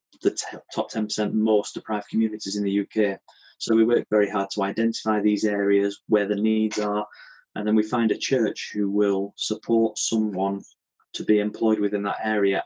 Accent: British